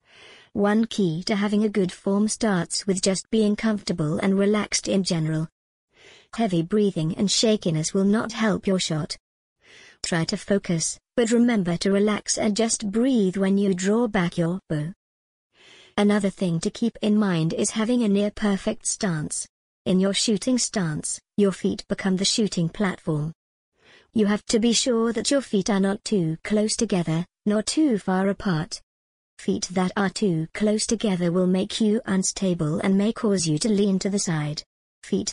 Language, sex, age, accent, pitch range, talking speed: English, male, 50-69, British, 175-215 Hz, 170 wpm